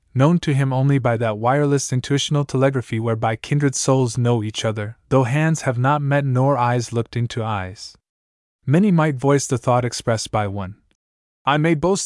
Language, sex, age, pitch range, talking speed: English, male, 20-39, 110-140 Hz, 180 wpm